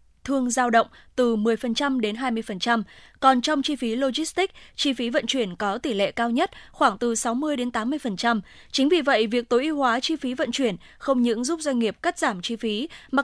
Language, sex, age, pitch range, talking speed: Vietnamese, female, 20-39, 220-275 Hz, 215 wpm